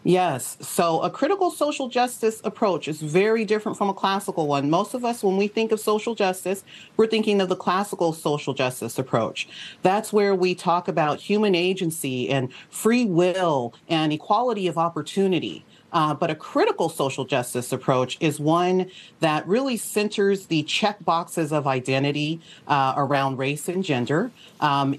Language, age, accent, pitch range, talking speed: English, 40-59, American, 150-190 Hz, 165 wpm